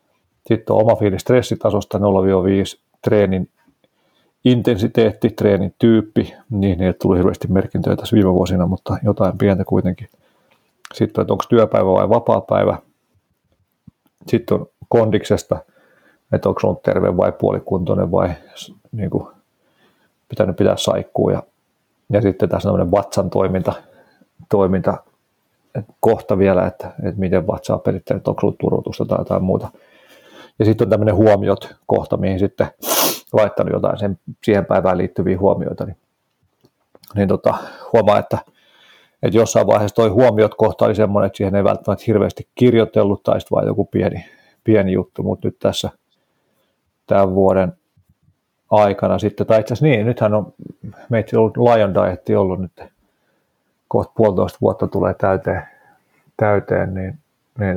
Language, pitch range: Finnish, 95-110 Hz